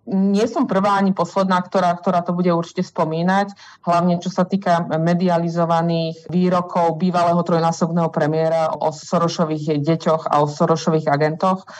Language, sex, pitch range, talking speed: Slovak, female, 160-180 Hz, 135 wpm